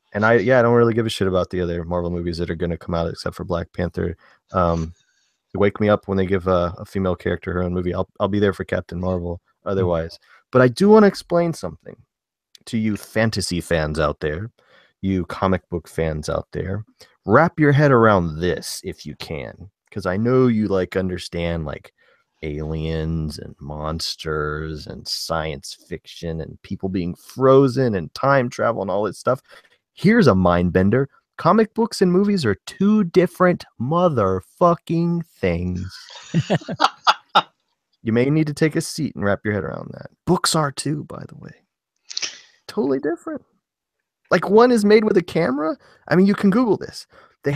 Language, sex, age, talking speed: English, male, 30-49, 185 wpm